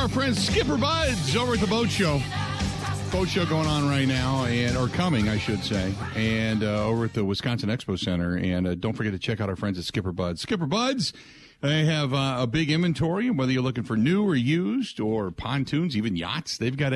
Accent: American